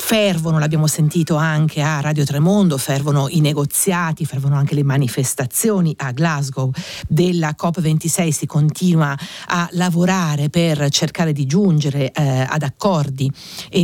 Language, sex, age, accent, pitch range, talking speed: Italian, female, 50-69, native, 145-175 Hz, 130 wpm